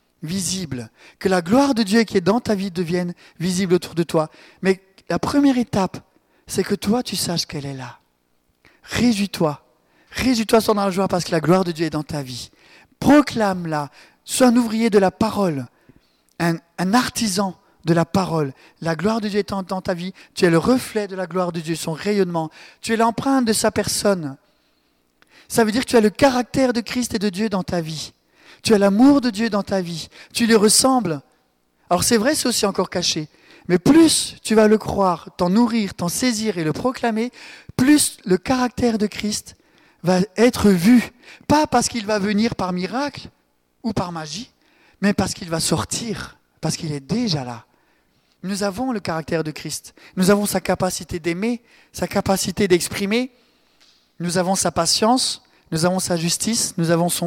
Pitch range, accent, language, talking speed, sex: 170-230 Hz, French, French, 190 wpm, male